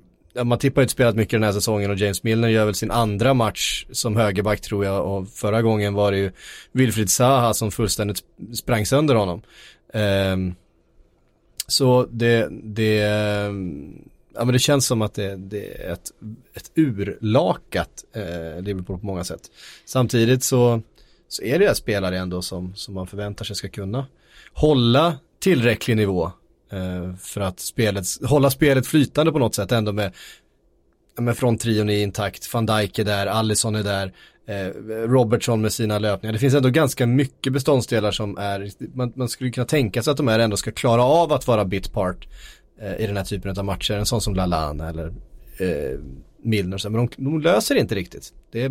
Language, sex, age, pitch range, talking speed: Swedish, male, 30-49, 100-125 Hz, 180 wpm